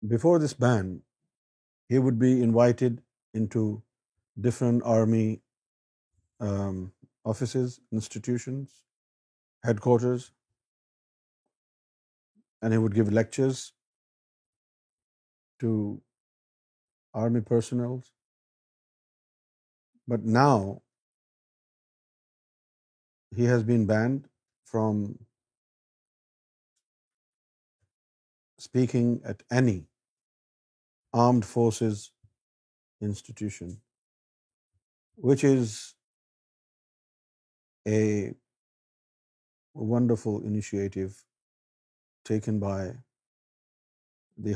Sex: male